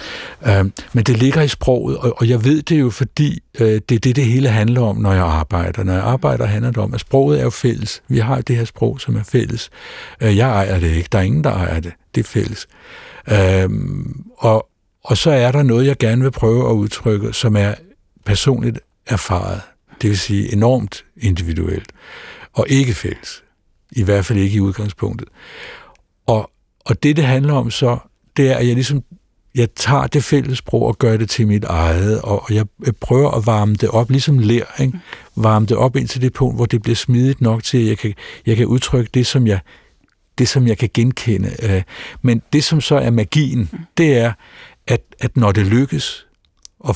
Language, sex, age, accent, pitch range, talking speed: Danish, male, 60-79, native, 105-130 Hz, 200 wpm